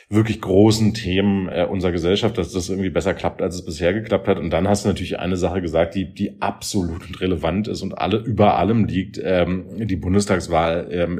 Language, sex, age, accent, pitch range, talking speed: German, male, 40-59, German, 90-105 Hz, 205 wpm